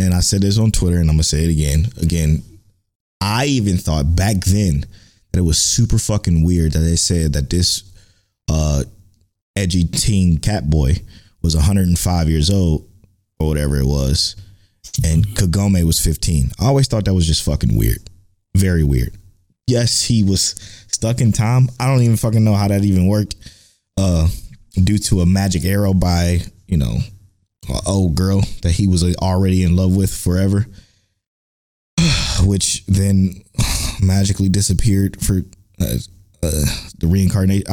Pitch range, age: 85-100 Hz, 20-39